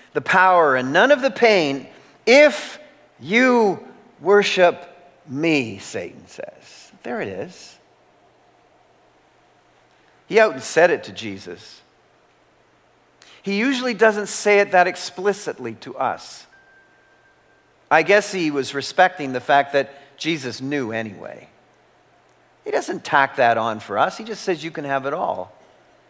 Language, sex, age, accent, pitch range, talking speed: English, male, 50-69, American, 150-205 Hz, 135 wpm